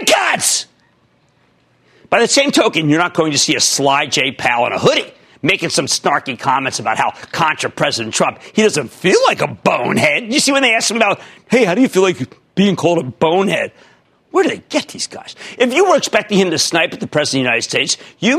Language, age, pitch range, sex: English, 50-69, 160-250 Hz, male